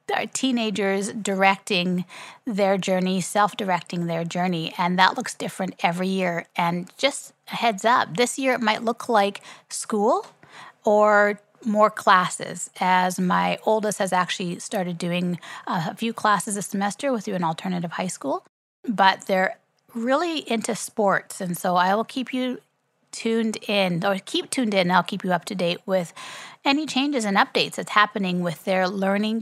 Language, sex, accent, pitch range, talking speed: English, female, American, 180-225 Hz, 165 wpm